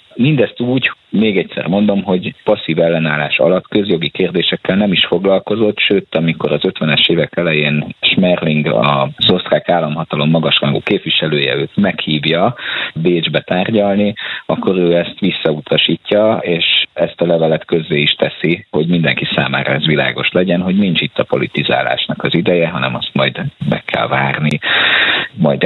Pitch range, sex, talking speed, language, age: 80-100 Hz, male, 145 wpm, Hungarian, 50-69